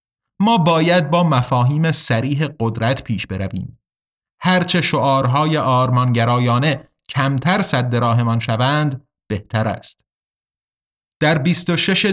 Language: Persian